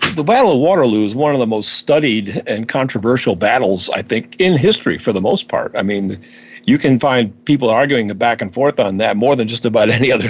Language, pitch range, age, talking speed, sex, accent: English, 120-175 Hz, 50-69, 225 wpm, male, American